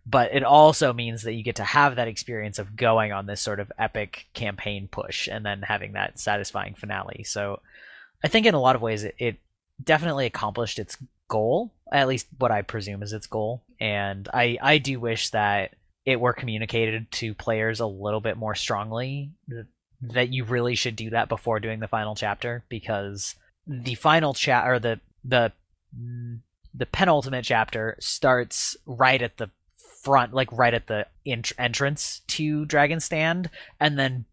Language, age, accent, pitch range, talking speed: English, 20-39, American, 105-125 Hz, 170 wpm